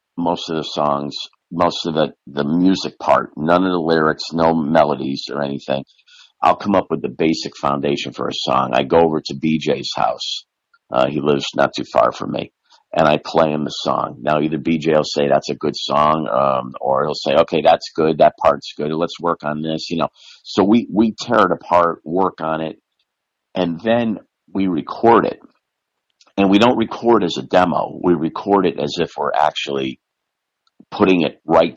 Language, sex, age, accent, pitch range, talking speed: English, male, 50-69, American, 75-90 Hz, 195 wpm